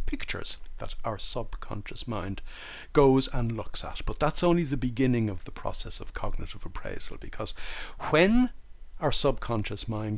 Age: 60-79